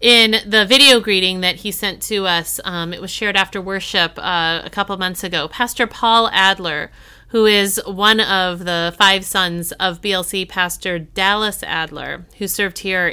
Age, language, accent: 30-49, English, American